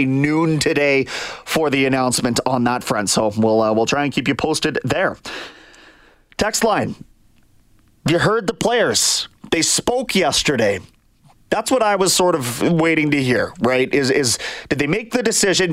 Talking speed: 170 wpm